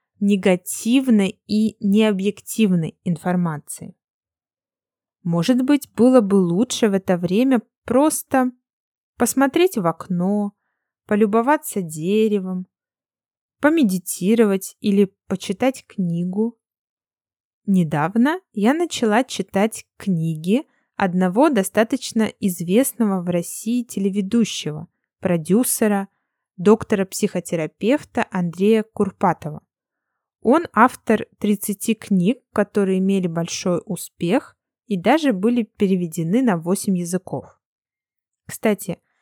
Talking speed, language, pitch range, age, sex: 80 wpm, Russian, 185-240 Hz, 20-39, female